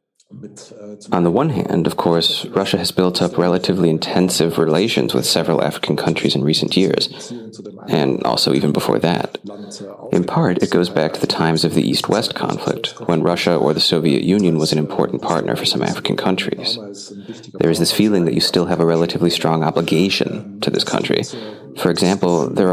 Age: 30-49